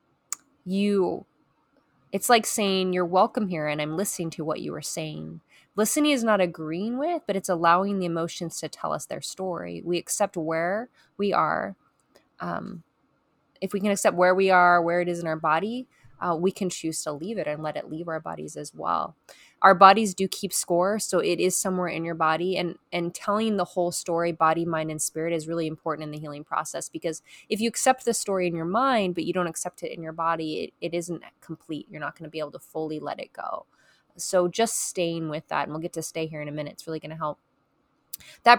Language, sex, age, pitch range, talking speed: English, female, 20-39, 160-195 Hz, 225 wpm